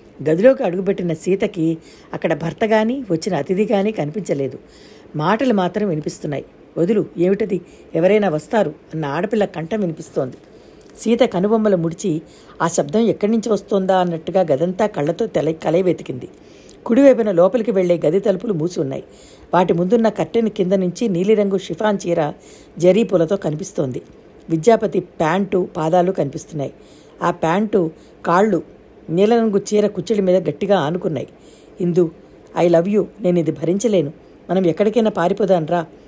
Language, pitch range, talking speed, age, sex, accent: Telugu, 165-210 Hz, 125 wpm, 60-79, female, native